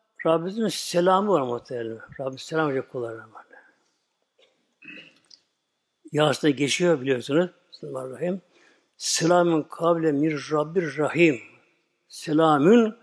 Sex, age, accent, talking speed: male, 60-79, native, 75 wpm